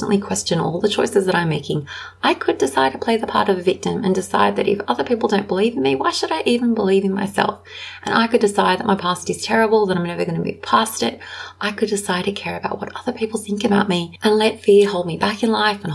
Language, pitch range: English, 185-220 Hz